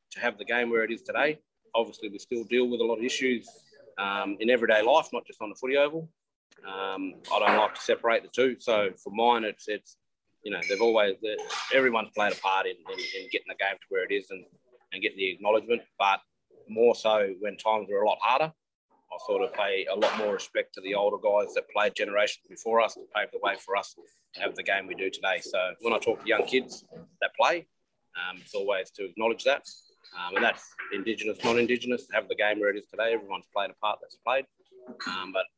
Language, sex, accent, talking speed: English, male, Australian, 230 wpm